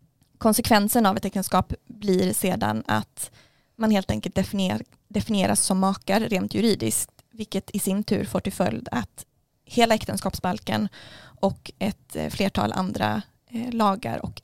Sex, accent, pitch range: female, native, 180-215 Hz